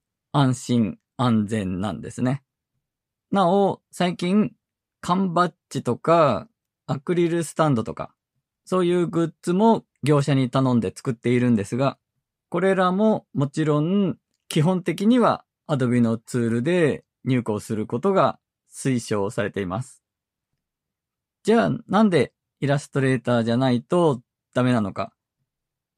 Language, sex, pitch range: Japanese, male, 125-180 Hz